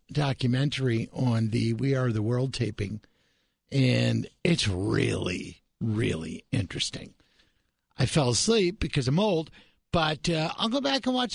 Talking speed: 135 wpm